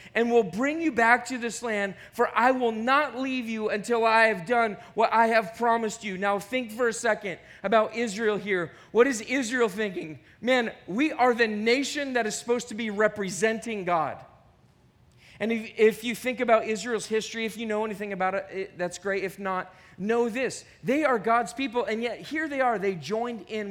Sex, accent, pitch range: male, American, 190-255 Hz